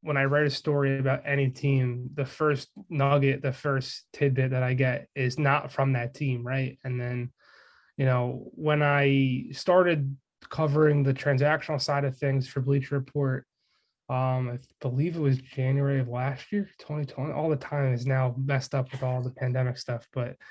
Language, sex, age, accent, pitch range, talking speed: English, male, 20-39, American, 130-150 Hz, 180 wpm